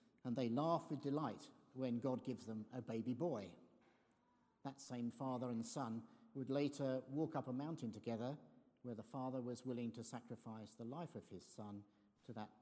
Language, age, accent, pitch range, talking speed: English, 50-69, British, 110-140 Hz, 180 wpm